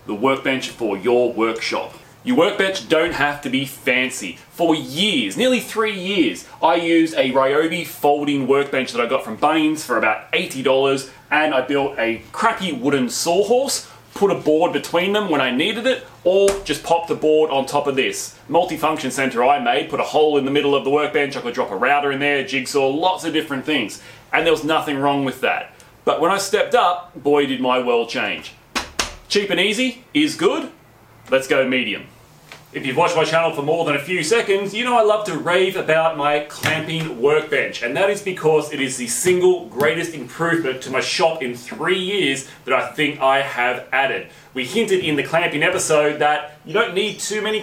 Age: 30-49